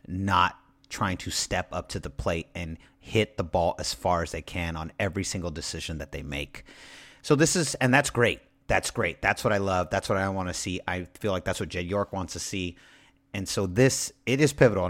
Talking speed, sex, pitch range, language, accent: 235 wpm, male, 90-135 Hz, English, American